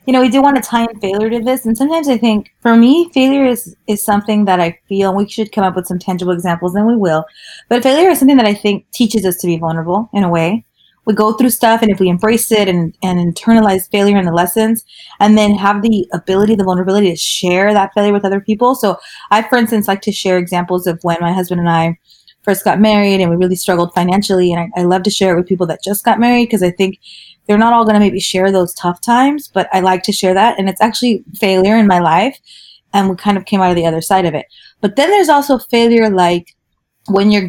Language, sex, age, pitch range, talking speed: English, female, 20-39, 185-230 Hz, 260 wpm